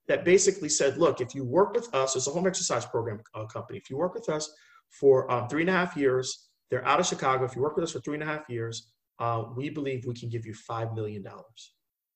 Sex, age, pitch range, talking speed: male, 30-49, 115-170 Hz, 255 wpm